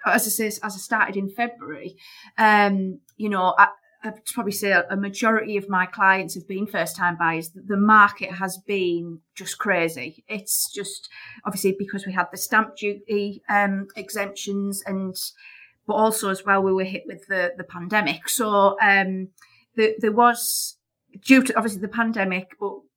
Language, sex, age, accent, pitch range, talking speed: English, female, 30-49, British, 185-215 Hz, 170 wpm